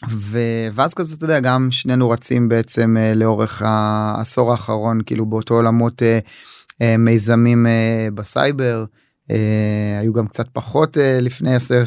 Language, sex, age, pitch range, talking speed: Hebrew, male, 20-39, 110-125 Hz, 115 wpm